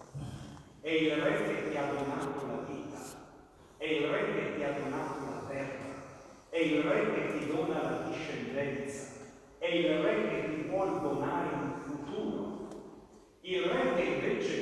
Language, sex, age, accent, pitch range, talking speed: Italian, male, 50-69, native, 140-175 Hz, 160 wpm